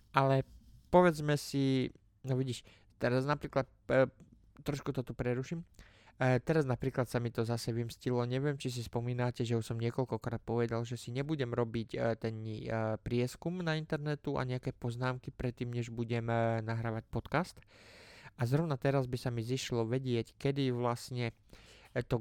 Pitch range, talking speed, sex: 115-130 Hz, 155 wpm, male